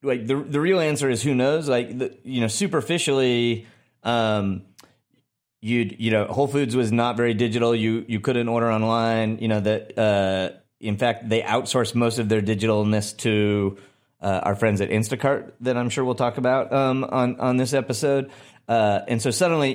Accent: American